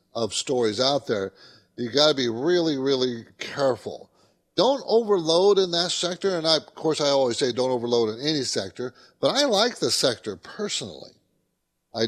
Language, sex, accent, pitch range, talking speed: English, male, American, 130-175 Hz, 175 wpm